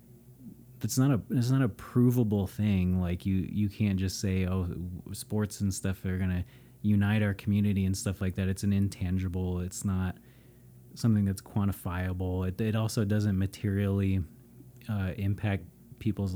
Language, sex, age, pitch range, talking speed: English, male, 30-49, 90-105 Hz, 160 wpm